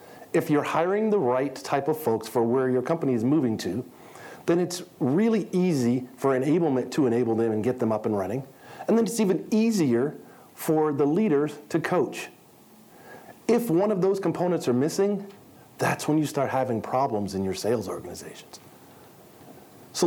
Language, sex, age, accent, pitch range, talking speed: English, male, 40-59, American, 125-170 Hz, 175 wpm